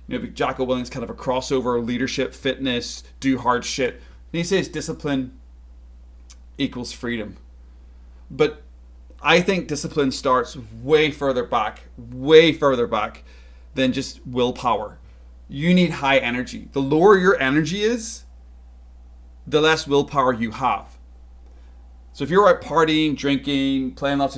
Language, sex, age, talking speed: English, male, 30-49, 135 wpm